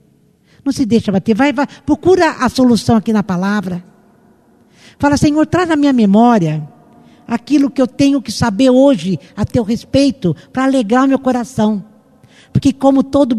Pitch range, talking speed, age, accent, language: 200-260 Hz, 160 wpm, 50-69, Brazilian, Portuguese